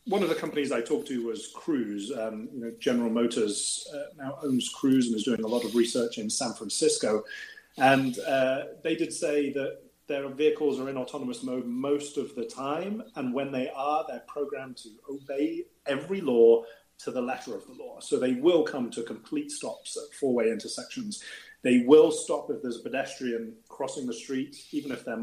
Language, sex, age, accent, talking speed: English, male, 30-49, British, 195 wpm